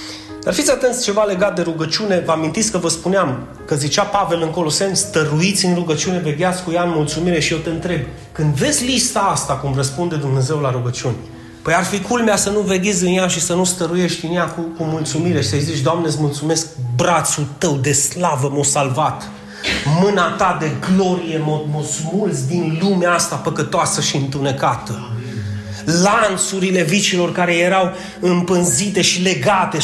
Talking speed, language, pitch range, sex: 175 wpm, Romanian, 145-185 Hz, male